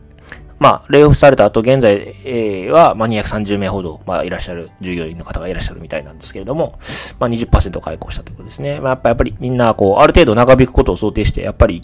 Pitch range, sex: 95-125 Hz, male